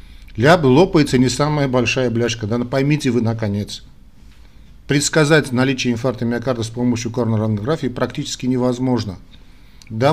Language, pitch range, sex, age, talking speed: Russian, 110-130 Hz, male, 50-69, 120 wpm